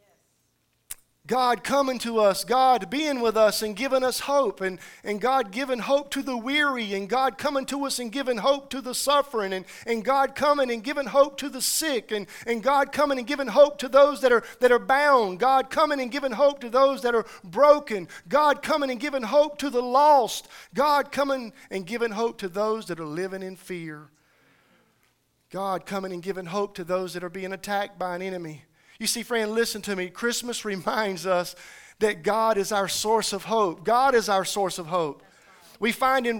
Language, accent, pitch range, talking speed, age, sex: English, American, 200-275 Hz, 205 wpm, 50-69, male